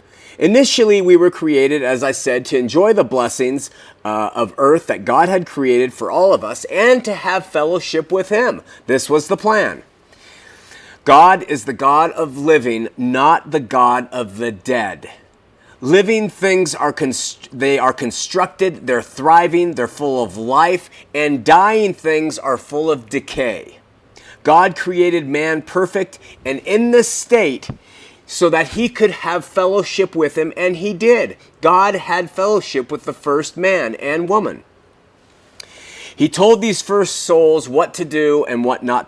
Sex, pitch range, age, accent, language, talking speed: male, 135-190 Hz, 30-49, American, English, 160 wpm